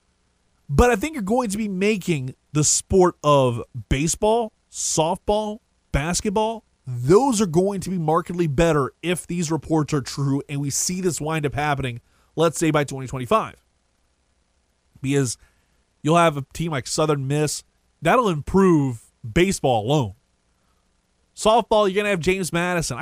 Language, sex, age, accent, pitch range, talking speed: English, male, 20-39, American, 110-185 Hz, 145 wpm